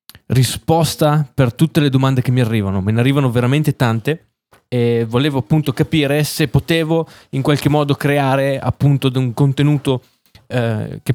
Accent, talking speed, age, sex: native, 150 wpm, 20-39, male